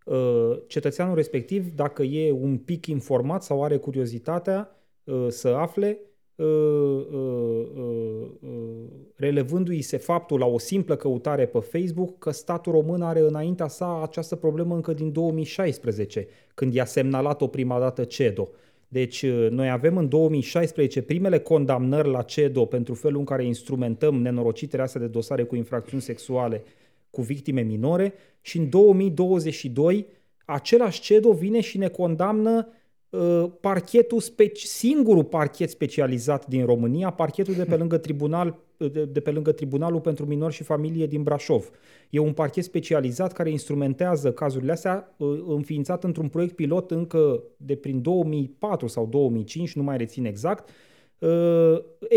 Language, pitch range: Romanian, 135-175 Hz